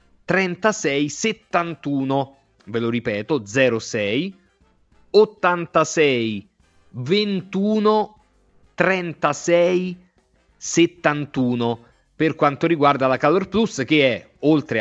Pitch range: 125-175 Hz